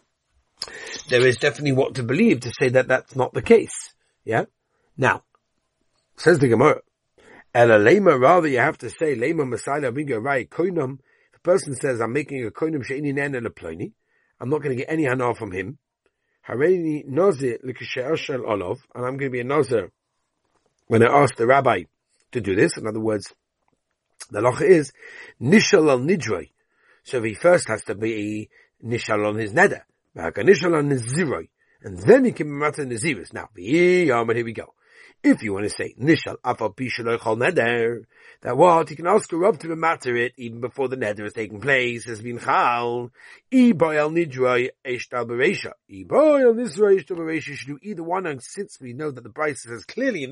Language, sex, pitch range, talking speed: English, male, 120-165 Hz, 175 wpm